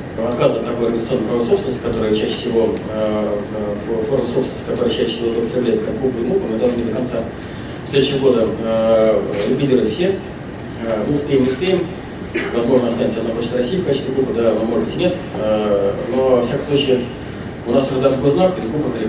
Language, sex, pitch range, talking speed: Russian, male, 115-135 Hz, 180 wpm